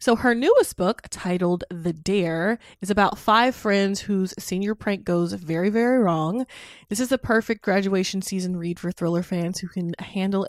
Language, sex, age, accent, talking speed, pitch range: English, female, 20-39, American, 175 wpm, 175-235 Hz